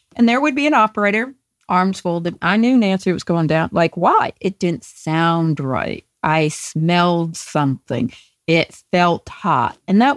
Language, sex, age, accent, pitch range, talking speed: English, female, 50-69, American, 170-215 Hz, 165 wpm